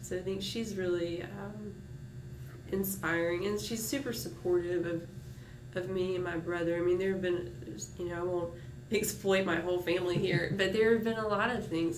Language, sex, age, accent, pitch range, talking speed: English, female, 20-39, American, 165-185 Hz, 195 wpm